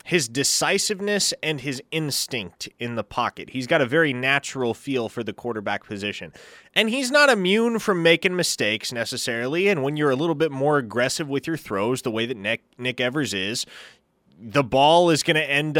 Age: 20-39